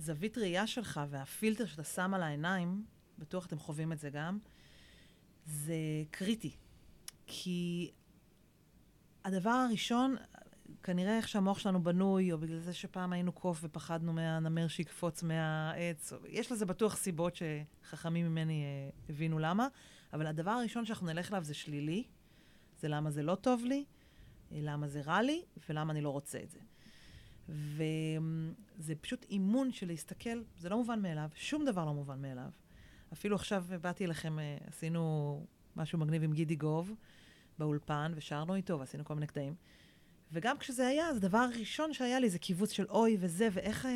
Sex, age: female, 30-49